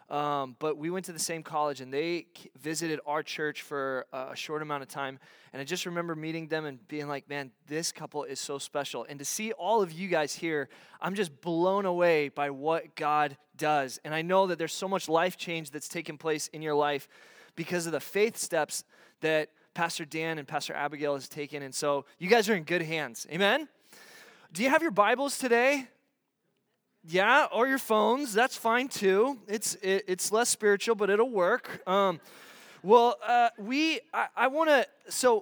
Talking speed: 200 wpm